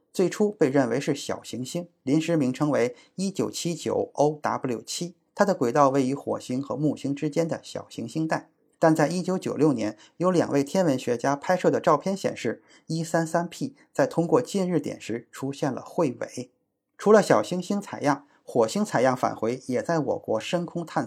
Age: 20-39